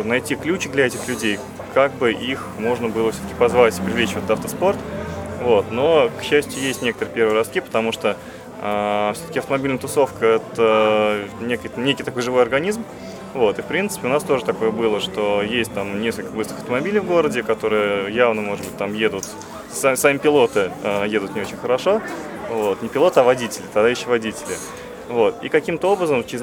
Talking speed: 185 wpm